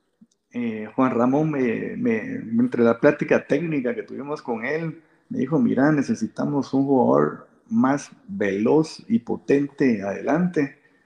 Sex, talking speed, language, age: male, 135 wpm, Spanish, 50-69